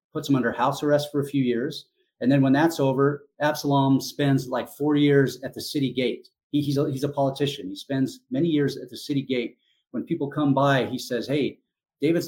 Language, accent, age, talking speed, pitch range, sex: English, American, 30-49, 220 wpm, 120-145 Hz, male